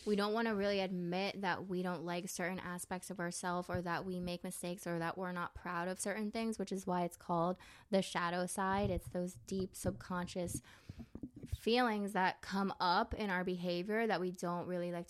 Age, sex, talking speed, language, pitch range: 20-39, female, 205 wpm, English, 175-190 Hz